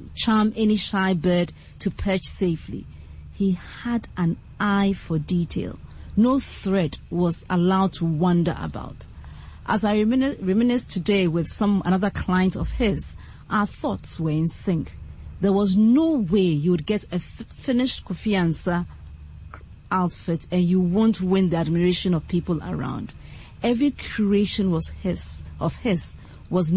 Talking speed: 145 wpm